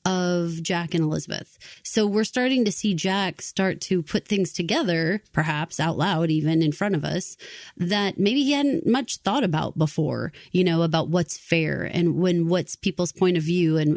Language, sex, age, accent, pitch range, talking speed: English, female, 30-49, American, 165-200 Hz, 190 wpm